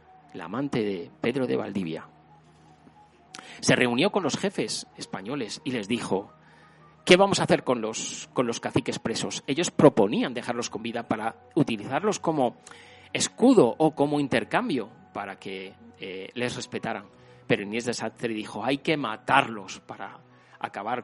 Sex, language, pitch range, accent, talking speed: male, Spanish, 95-120 Hz, Spanish, 145 wpm